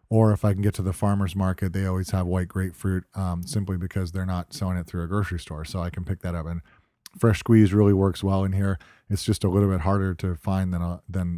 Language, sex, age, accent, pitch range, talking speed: English, male, 40-59, American, 95-110 Hz, 265 wpm